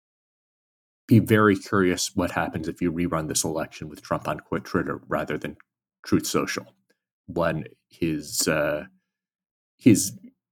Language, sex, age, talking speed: English, male, 30-49, 130 wpm